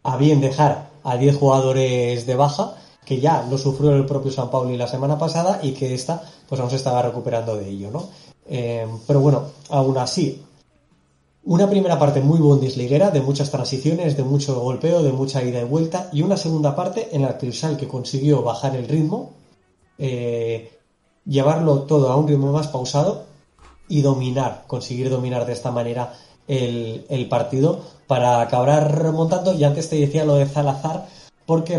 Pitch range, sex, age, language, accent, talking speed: 125-150 Hz, male, 20-39, Spanish, Spanish, 175 wpm